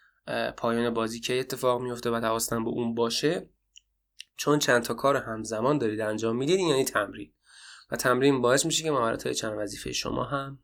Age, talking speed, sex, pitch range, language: 20-39, 175 wpm, male, 115-140 Hz, Persian